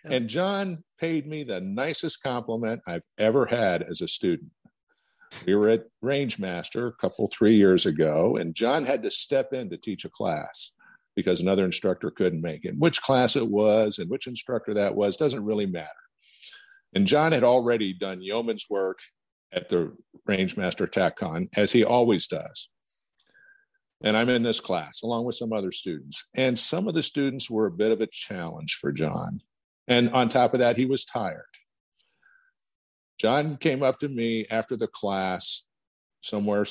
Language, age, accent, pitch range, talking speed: English, 50-69, American, 105-155 Hz, 170 wpm